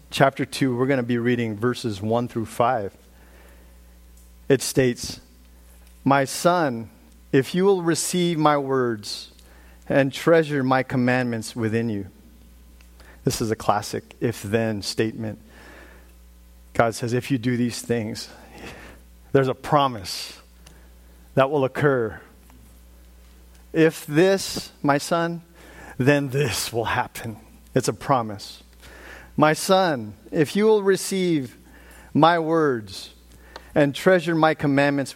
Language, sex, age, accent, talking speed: English, male, 40-59, American, 115 wpm